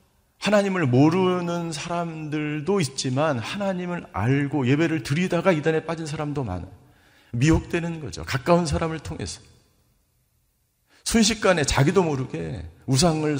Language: Korean